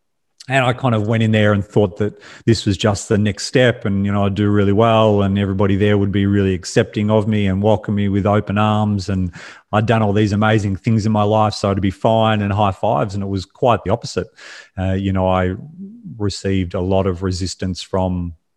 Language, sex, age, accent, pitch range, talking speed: English, male, 40-59, Australian, 95-105 Hz, 230 wpm